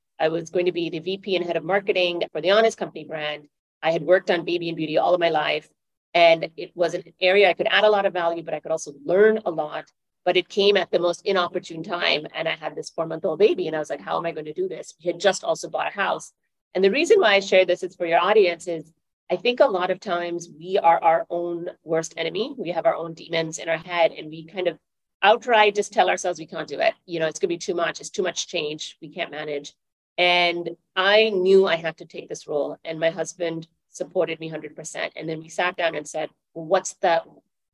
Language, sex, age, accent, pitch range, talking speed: English, female, 30-49, American, 160-195 Hz, 260 wpm